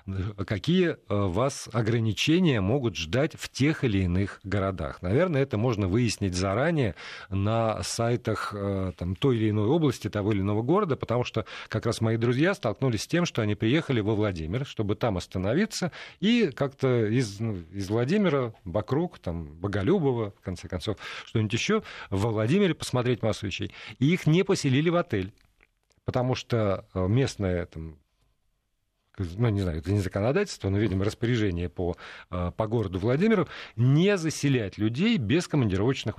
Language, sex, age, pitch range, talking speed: Russian, male, 40-59, 95-135 Hz, 150 wpm